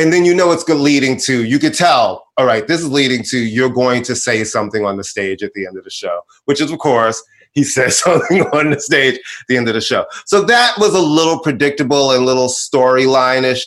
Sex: male